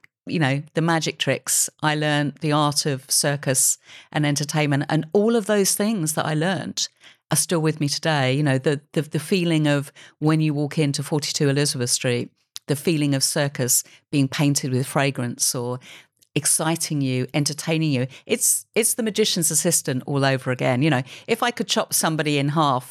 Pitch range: 140-165 Hz